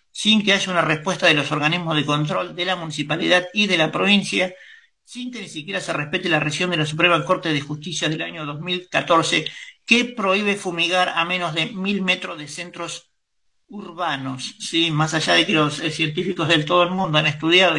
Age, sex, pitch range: 50-69, male, 155-185 Hz